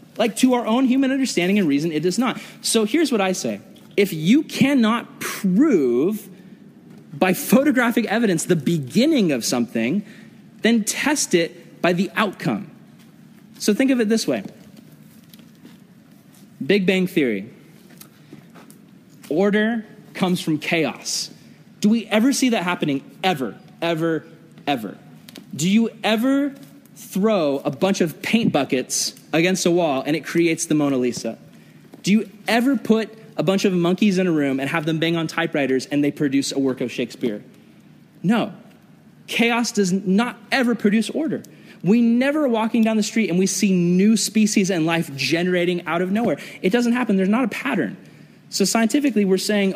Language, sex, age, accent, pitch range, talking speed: English, male, 30-49, American, 175-230 Hz, 160 wpm